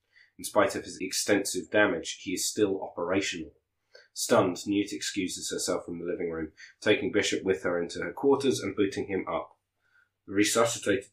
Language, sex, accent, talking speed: English, male, British, 165 wpm